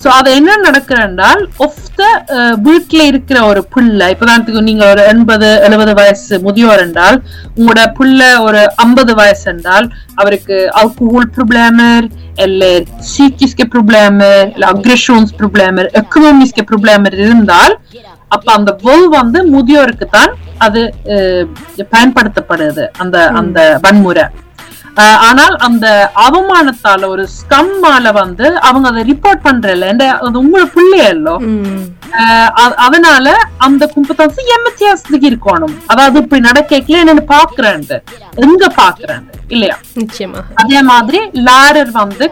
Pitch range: 210-290 Hz